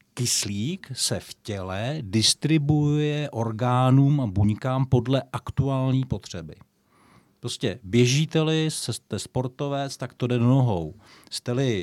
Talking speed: 105 wpm